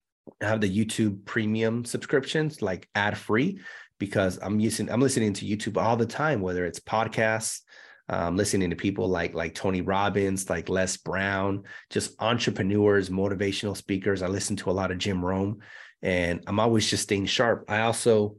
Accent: American